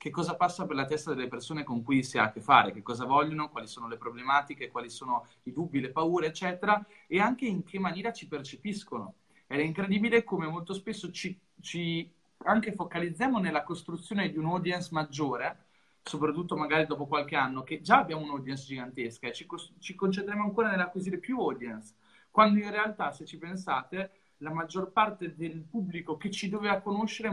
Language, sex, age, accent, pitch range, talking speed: Italian, male, 30-49, native, 150-195 Hz, 180 wpm